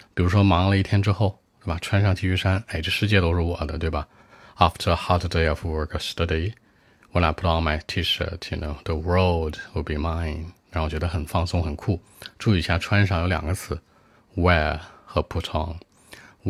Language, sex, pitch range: Chinese, male, 80-95 Hz